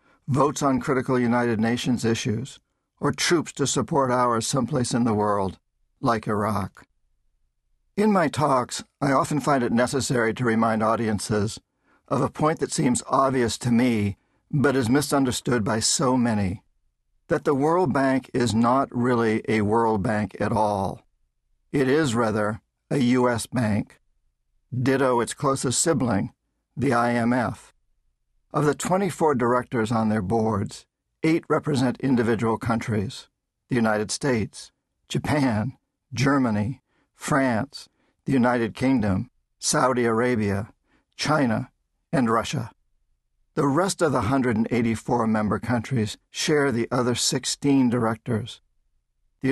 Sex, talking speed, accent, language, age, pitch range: male, 125 wpm, American, English, 50-69, 105-130 Hz